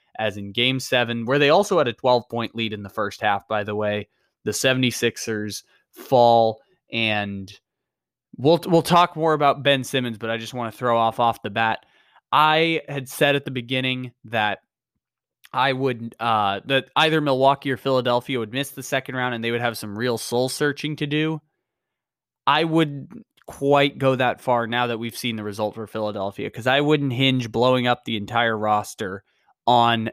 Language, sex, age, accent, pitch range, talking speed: English, male, 20-39, American, 115-140 Hz, 185 wpm